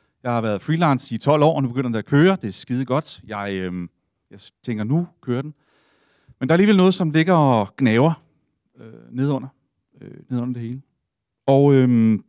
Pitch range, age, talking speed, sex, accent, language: 115-160 Hz, 40-59, 200 wpm, male, native, Danish